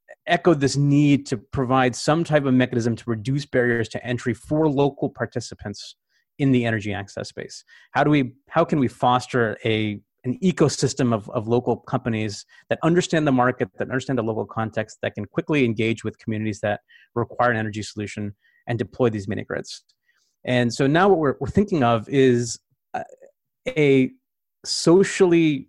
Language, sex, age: English, male, 30-49